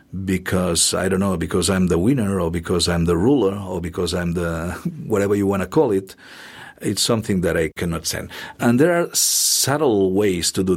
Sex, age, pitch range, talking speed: male, 50-69, 85-110 Hz, 200 wpm